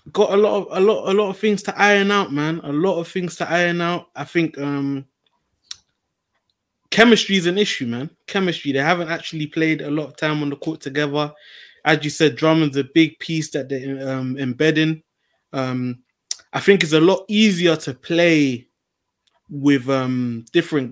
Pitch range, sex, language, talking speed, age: 135-160 Hz, male, English, 185 wpm, 20-39